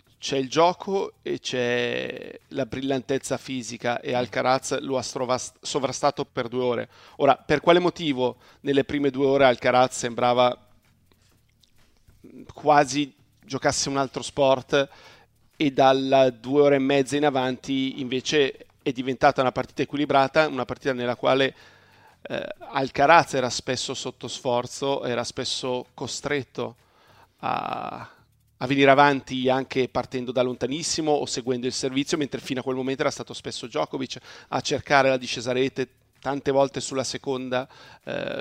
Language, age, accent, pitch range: Italian, 40-59, native, 125-140 Hz